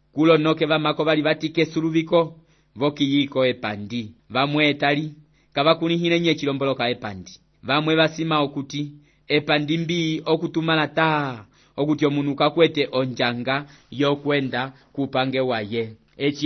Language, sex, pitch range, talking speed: English, male, 135-160 Hz, 115 wpm